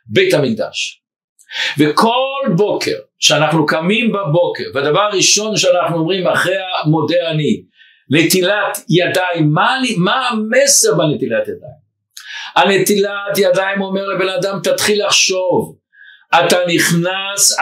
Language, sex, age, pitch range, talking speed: Hebrew, male, 60-79, 170-220 Hz, 100 wpm